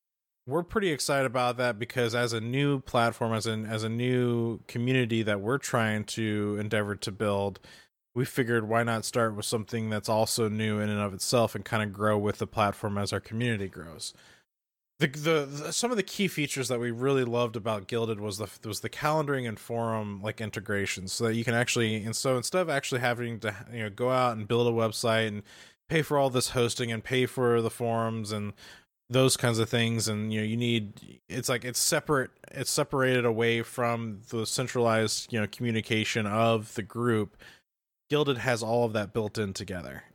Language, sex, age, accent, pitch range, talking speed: English, male, 20-39, American, 110-125 Hz, 205 wpm